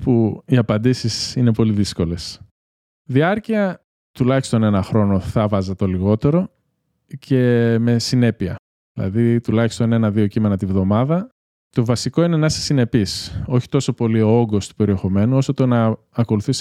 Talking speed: 145 wpm